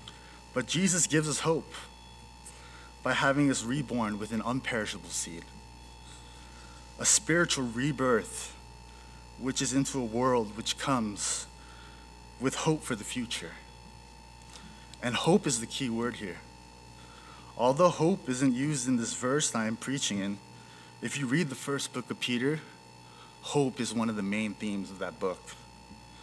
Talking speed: 145 wpm